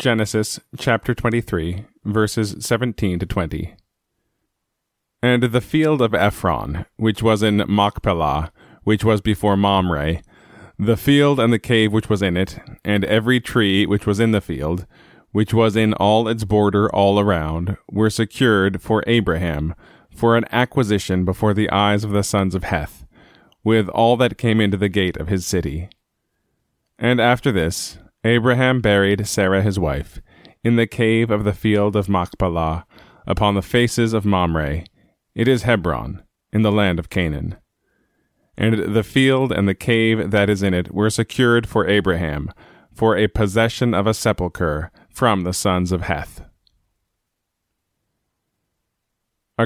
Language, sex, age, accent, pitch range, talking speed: English, male, 20-39, American, 95-115 Hz, 150 wpm